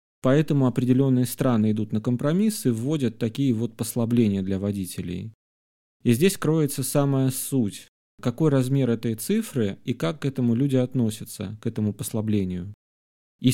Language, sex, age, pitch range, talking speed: Russian, male, 30-49, 110-135 Hz, 140 wpm